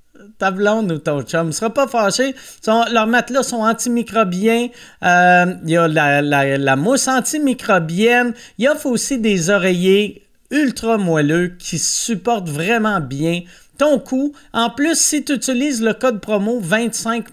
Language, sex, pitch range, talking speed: French, male, 175-235 Hz, 150 wpm